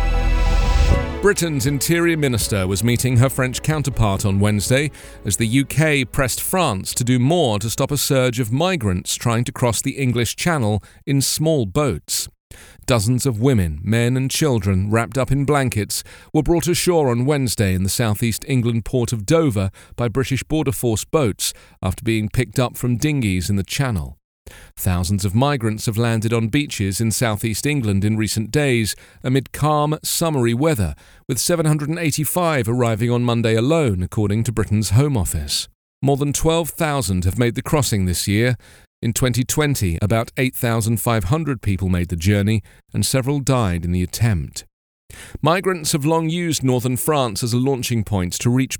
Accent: British